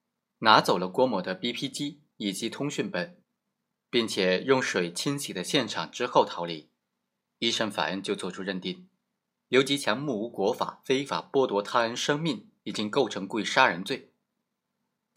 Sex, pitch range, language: male, 105-155 Hz, Chinese